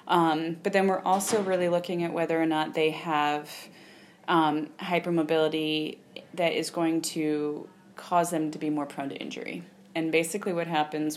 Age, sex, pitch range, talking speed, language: 30-49, female, 155-180 Hz, 165 wpm, English